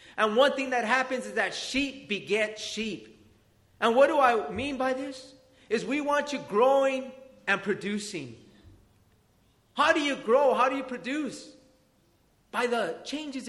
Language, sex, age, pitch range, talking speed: English, male, 40-59, 230-295 Hz, 155 wpm